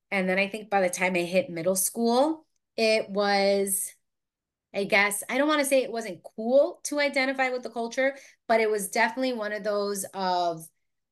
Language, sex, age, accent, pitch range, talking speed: English, female, 20-39, American, 180-225 Hz, 195 wpm